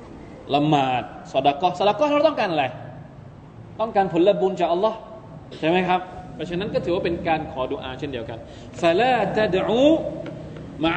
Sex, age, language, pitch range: male, 20-39, Thai, 145-205 Hz